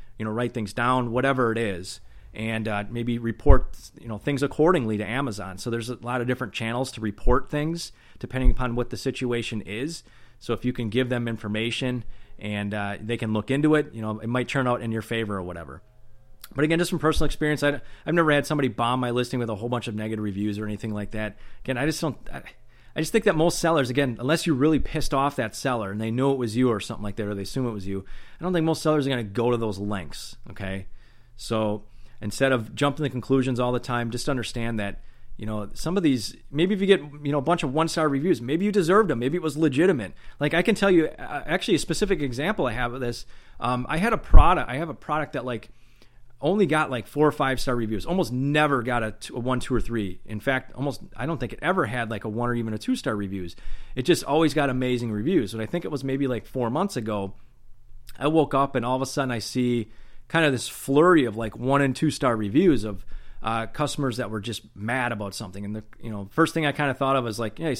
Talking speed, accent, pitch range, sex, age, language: 250 wpm, American, 110-140 Hz, male, 30-49, English